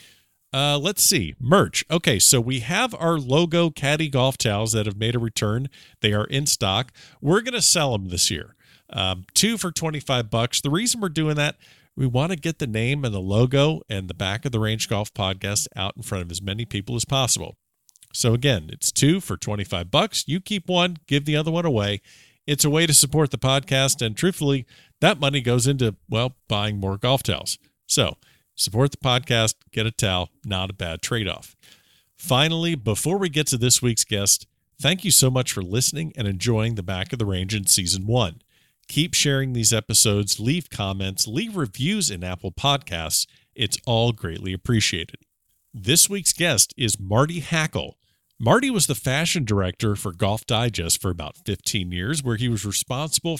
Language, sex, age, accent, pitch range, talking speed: English, male, 50-69, American, 105-150 Hz, 190 wpm